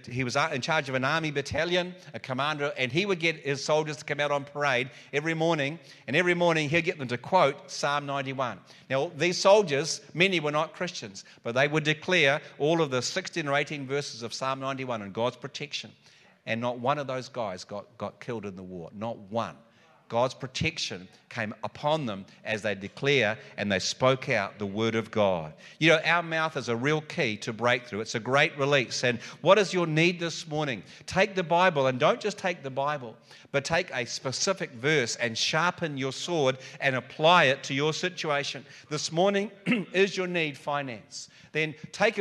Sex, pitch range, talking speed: male, 130-175 Hz, 200 wpm